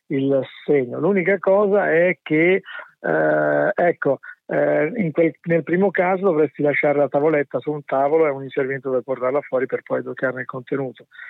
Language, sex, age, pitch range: Italian, male, 50-69, 130-150 Hz